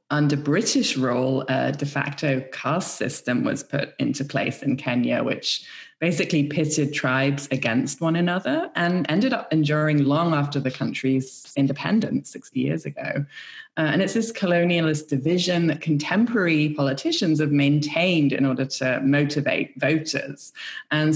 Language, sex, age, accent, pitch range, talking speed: English, female, 20-39, British, 140-170 Hz, 140 wpm